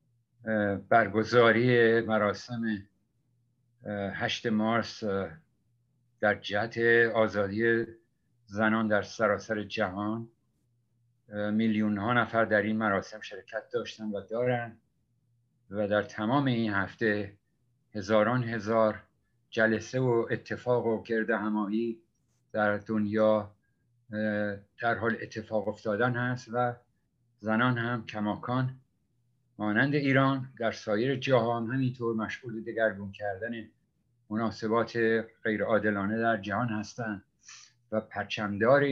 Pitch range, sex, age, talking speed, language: 105-120 Hz, male, 50-69, 95 wpm, Persian